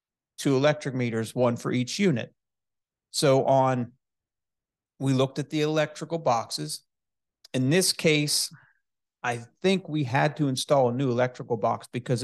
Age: 40-59